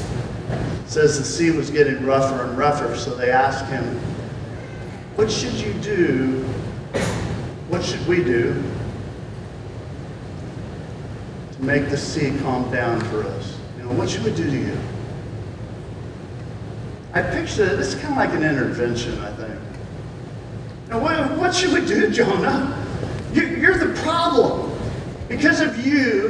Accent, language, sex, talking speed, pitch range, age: American, English, male, 135 wpm, 120-185 Hz, 40-59